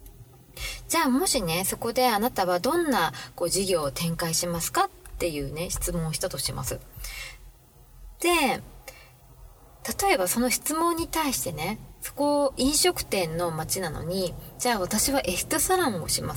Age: 20-39